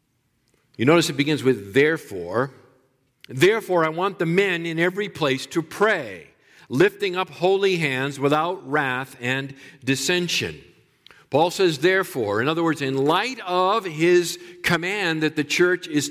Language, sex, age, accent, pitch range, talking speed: English, male, 50-69, American, 140-175 Hz, 145 wpm